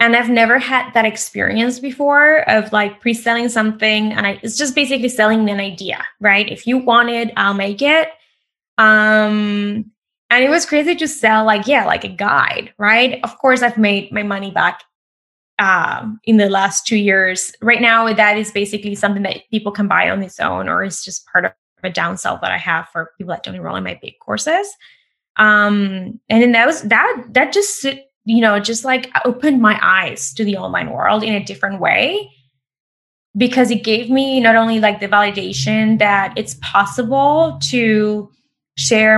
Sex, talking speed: female, 190 wpm